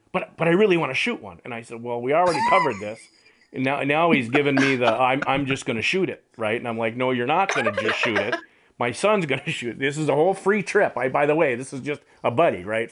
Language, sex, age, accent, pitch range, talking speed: English, male, 40-59, American, 115-165 Hz, 300 wpm